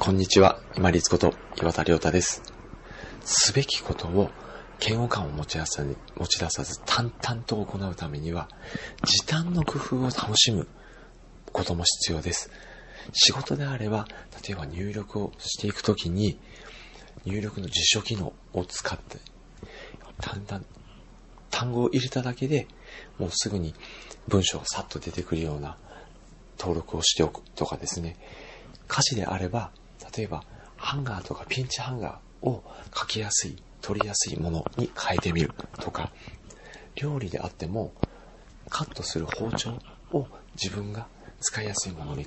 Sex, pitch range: male, 85-120 Hz